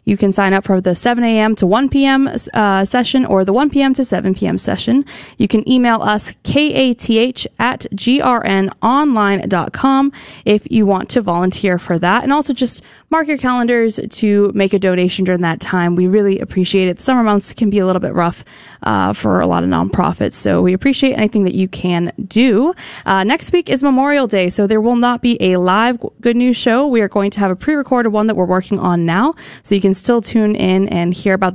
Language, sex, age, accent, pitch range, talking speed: English, female, 20-39, American, 185-240 Hz, 205 wpm